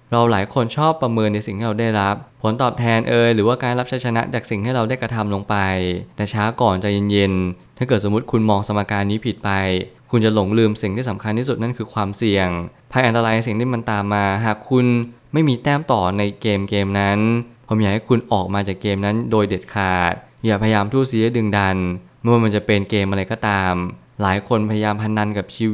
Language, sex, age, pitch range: Thai, male, 20-39, 100-120 Hz